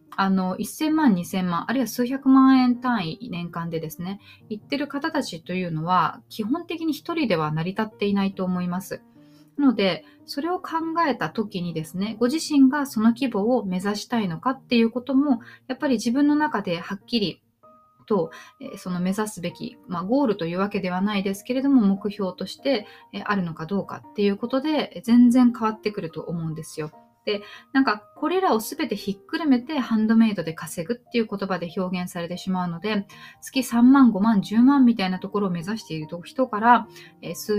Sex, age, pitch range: female, 20-39, 180-260 Hz